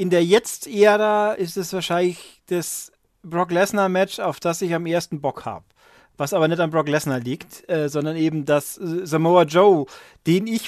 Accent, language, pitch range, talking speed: German, German, 155-190 Hz, 185 wpm